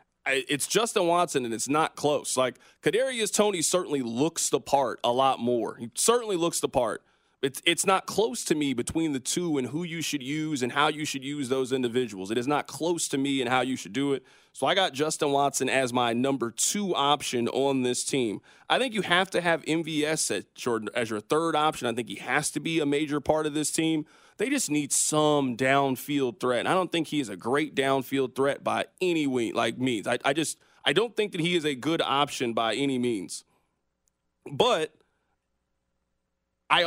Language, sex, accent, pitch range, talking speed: English, male, American, 130-155 Hz, 215 wpm